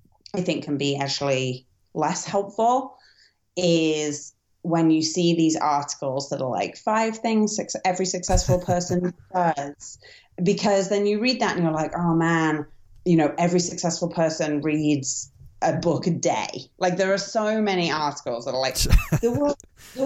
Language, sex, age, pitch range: English, female, 30-49, 150-200 Hz